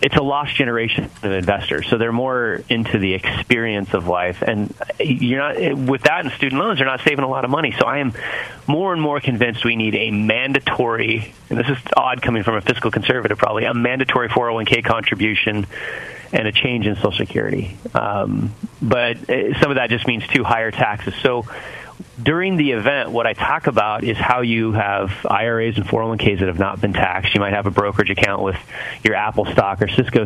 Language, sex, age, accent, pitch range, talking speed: English, male, 30-49, American, 105-130 Hz, 210 wpm